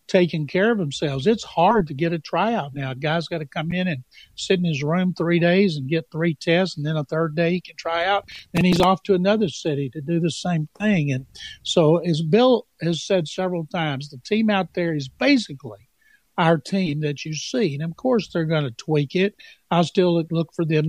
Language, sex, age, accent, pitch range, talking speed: English, male, 60-79, American, 155-185 Hz, 230 wpm